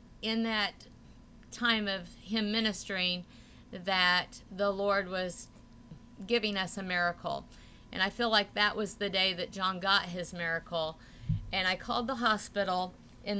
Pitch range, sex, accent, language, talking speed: 170-205 Hz, female, American, English, 150 wpm